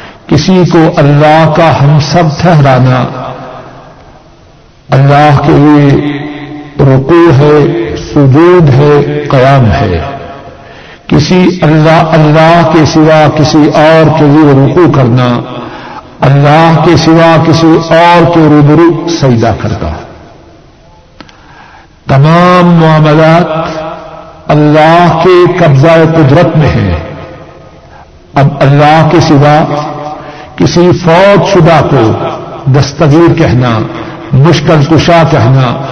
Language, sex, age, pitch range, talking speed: Urdu, male, 60-79, 145-170 Hz, 95 wpm